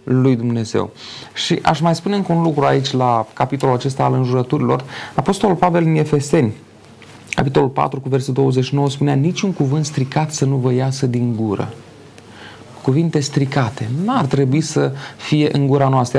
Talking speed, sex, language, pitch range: 155 wpm, male, Romanian, 135-170 Hz